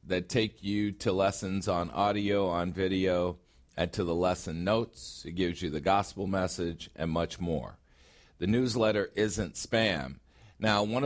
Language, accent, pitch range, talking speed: English, American, 85-105 Hz, 155 wpm